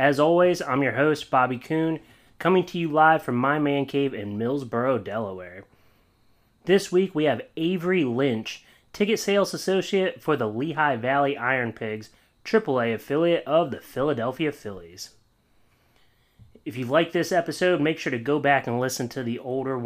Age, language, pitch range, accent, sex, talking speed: 30-49, English, 120-145 Hz, American, male, 165 wpm